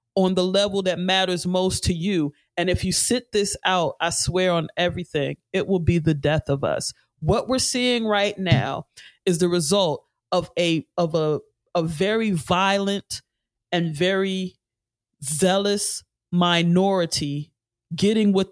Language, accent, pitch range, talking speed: English, American, 170-195 Hz, 150 wpm